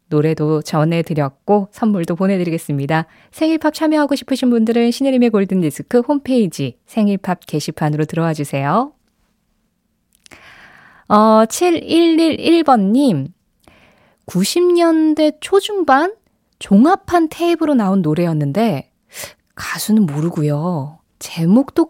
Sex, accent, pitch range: female, native, 175-295 Hz